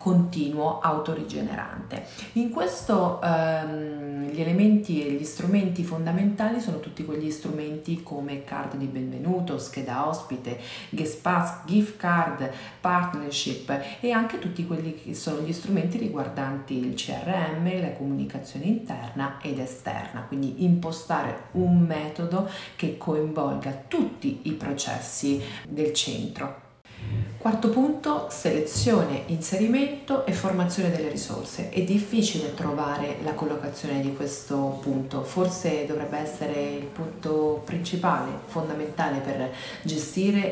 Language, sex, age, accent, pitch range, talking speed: Italian, female, 40-59, native, 140-175 Hz, 115 wpm